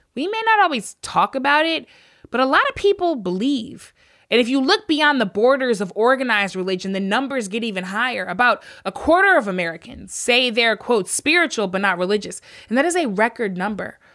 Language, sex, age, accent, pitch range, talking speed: English, female, 20-39, American, 195-265 Hz, 195 wpm